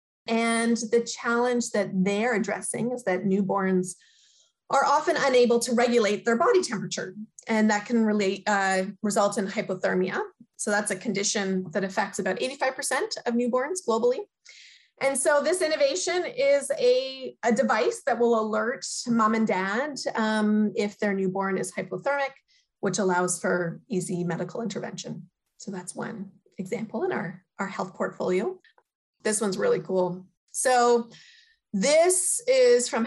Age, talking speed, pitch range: 30-49, 140 wpm, 195-245 Hz